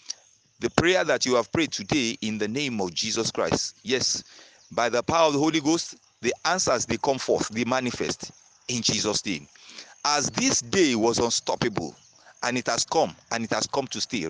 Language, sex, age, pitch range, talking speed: English, male, 40-59, 120-175 Hz, 195 wpm